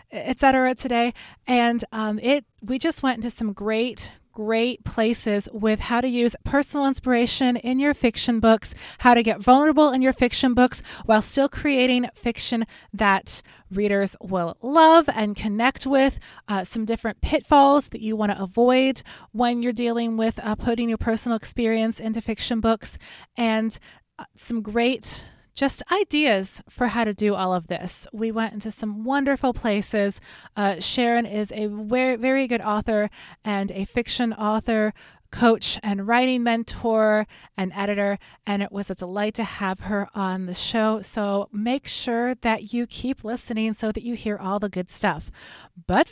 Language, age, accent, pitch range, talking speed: English, 20-39, American, 210-250 Hz, 165 wpm